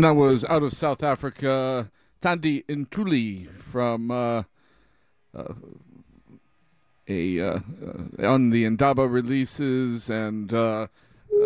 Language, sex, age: English, male, 40-59